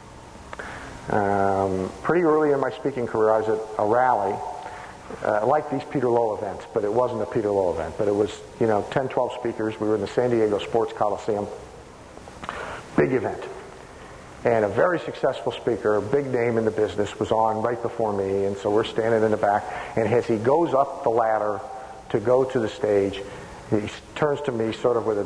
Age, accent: 50-69, American